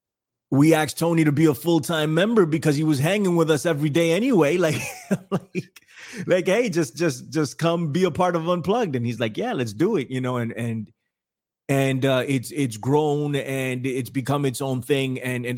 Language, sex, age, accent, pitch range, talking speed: English, male, 30-49, American, 125-165 Hz, 210 wpm